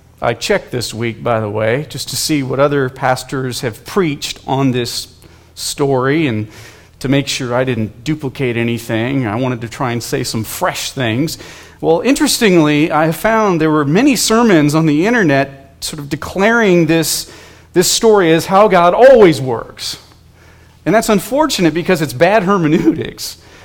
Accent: American